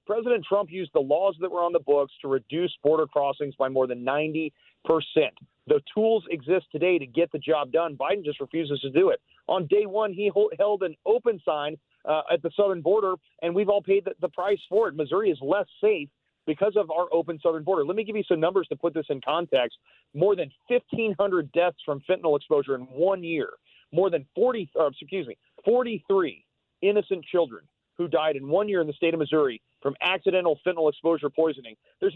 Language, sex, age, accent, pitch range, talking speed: English, male, 40-59, American, 150-205 Hz, 210 wpm